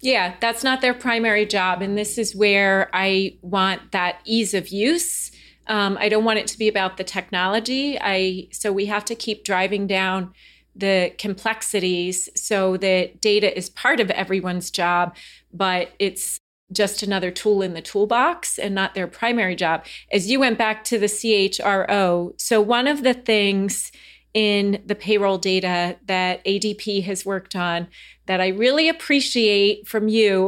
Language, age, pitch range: English, 30-49, 185-220 Hz